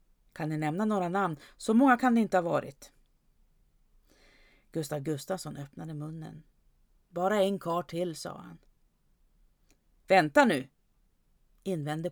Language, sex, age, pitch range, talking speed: Swedish, female, 40-59, 160-220 Hz, 125 wpm